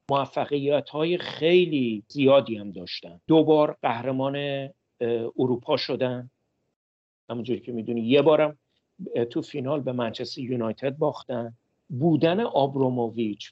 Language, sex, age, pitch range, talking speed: Persian, male, 50-69, 125-160 Hz, 100 wpm